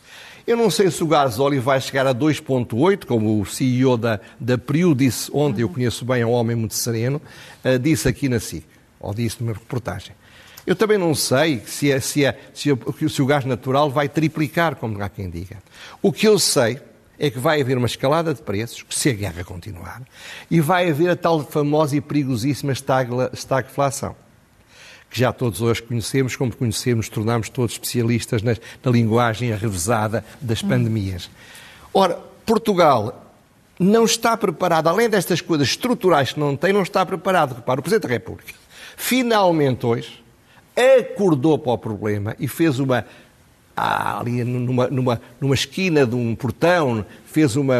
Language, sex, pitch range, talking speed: Portuguese, male, 120-160 Hz, 175 wpm